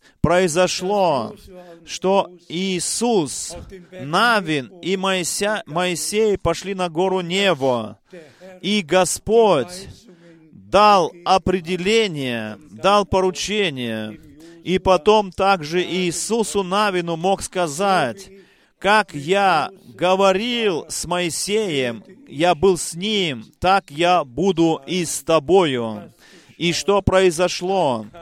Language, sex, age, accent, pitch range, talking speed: Russian, male, 30-49, native, 165-195 Hz, 90 wpm